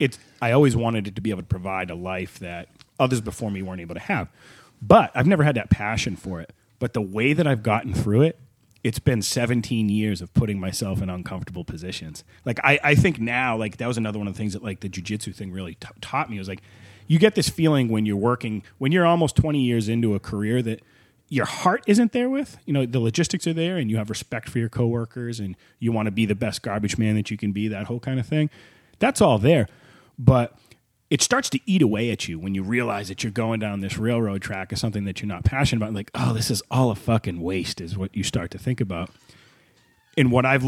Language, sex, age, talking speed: English, male, 30-49, 250 wpm